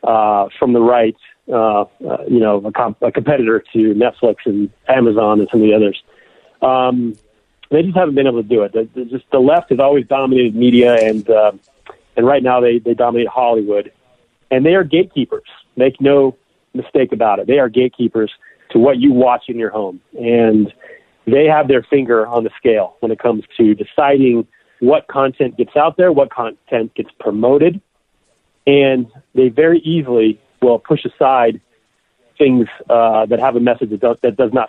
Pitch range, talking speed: 115-135 Hz, 185 wpm